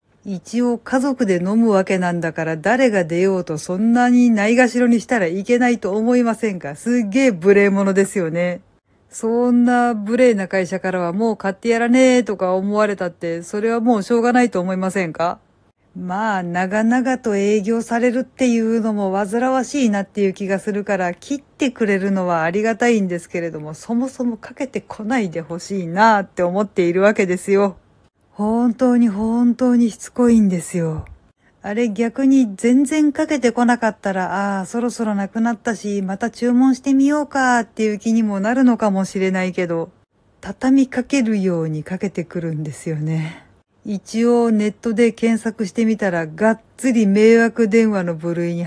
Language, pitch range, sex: Japanese, 185-240 Hz, female